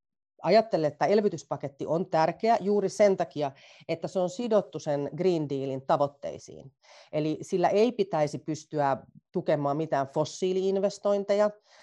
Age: 40-59